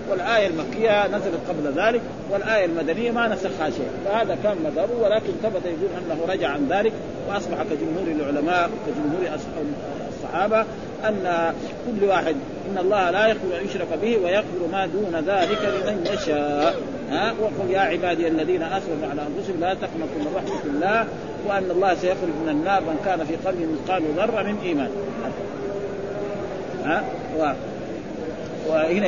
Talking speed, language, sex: 145 wpm, Arabic, male